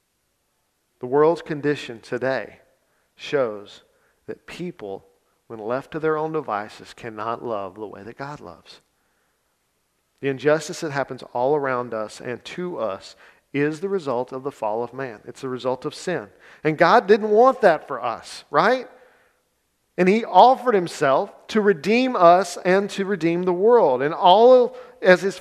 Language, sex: English, male